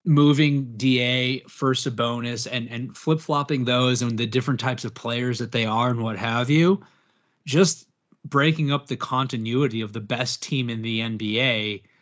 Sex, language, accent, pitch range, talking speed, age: male, English, American, 115-135 Hz, 175 wpm, 30-49